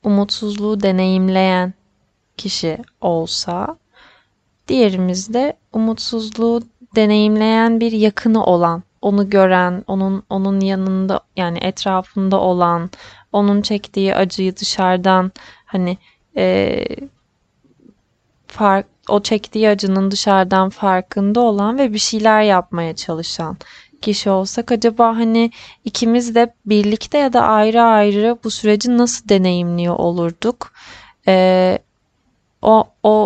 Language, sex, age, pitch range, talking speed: Turkish, female, 20-39, 185-220 Hz, 100 wpm